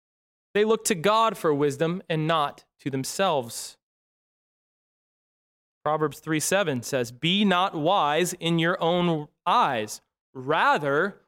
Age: 20-39